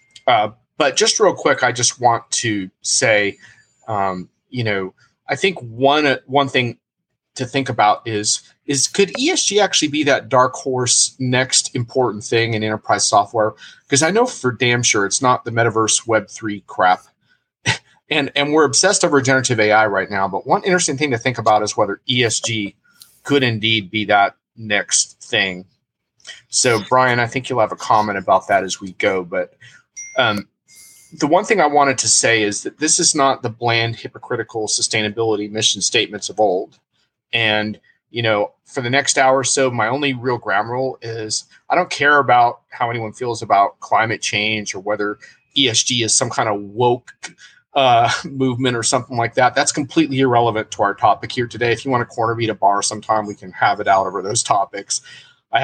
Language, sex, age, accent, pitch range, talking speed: English, male, 30-49, American, 110-135 Hz, 190 wpm